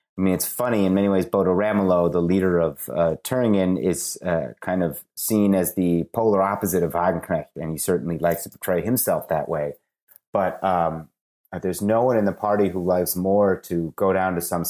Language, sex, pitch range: English, male, 85-100 Hz